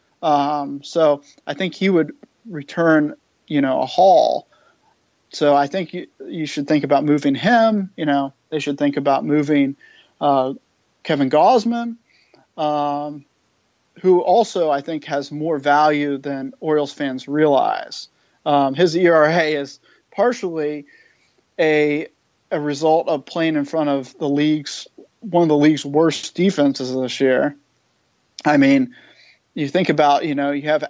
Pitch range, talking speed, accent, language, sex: 140-160 Hz, 145 wpm, American, English, male